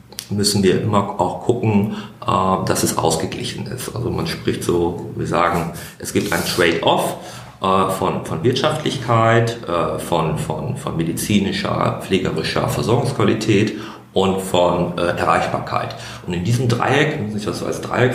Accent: German